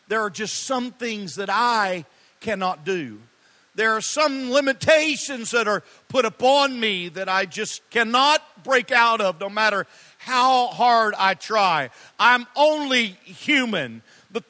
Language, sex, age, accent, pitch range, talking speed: English, male, 50-69, American, 240-295 Hz, 145 wpm